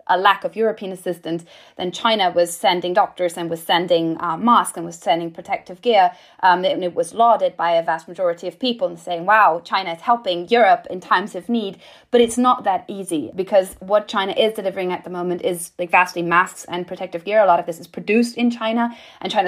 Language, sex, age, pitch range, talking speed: English, female, 20-39, 170-210 Hz, 220 wpm